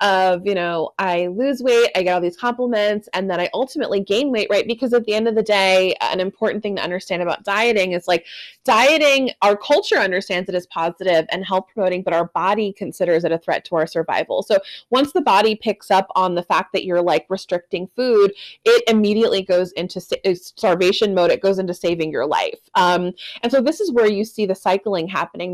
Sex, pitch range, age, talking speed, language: female, 175-215 Hz, 20-39, 215 wpm, English